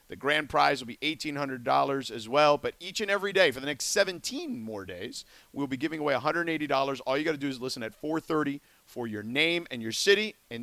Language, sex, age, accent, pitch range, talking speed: English, male, 40-59, American, 130-195 Hz, 225 wpm